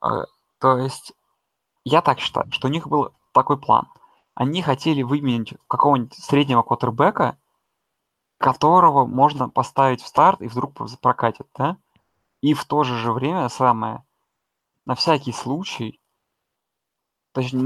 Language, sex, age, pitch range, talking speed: Russian, male, 20-39, 125-150 Hz, 125 wpm